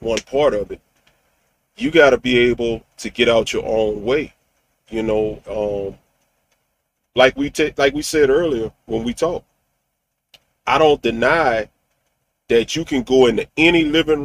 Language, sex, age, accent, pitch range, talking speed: English, male, 40-59, American, 115-155 Hz, 160 wpm